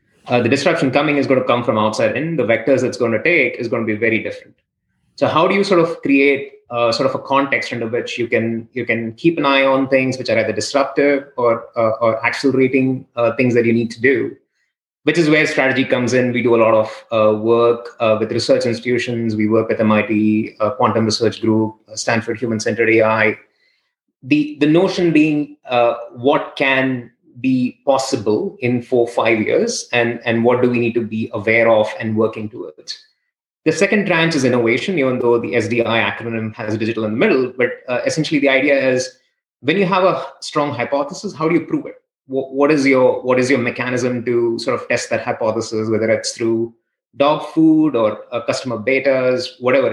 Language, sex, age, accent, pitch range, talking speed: English, male, 30-49, Indian, 115-145 Hz, 205 wpm